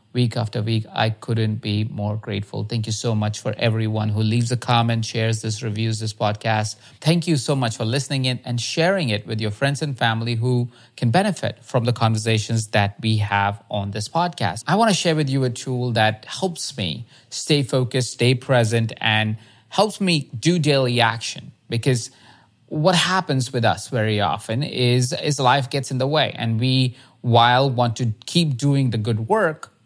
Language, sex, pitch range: English, male, 110-135 Hz